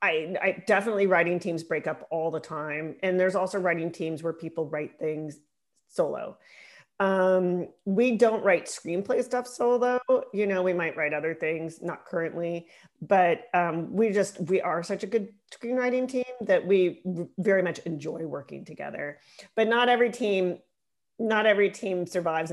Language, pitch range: English, 165-225 Hz